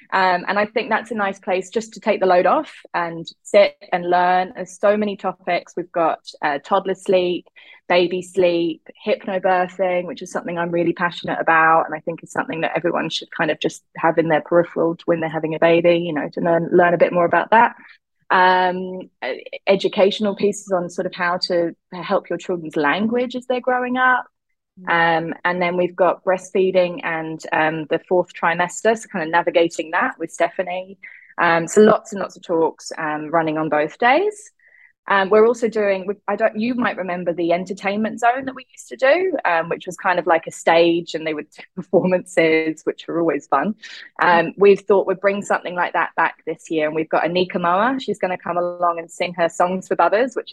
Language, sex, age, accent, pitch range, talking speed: English, female, 20-39, British, 170-205 Hz, 210 wpm